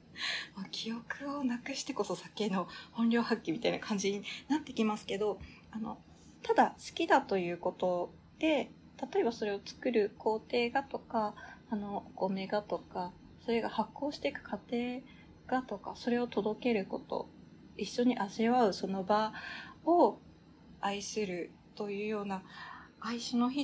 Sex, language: female, Japanese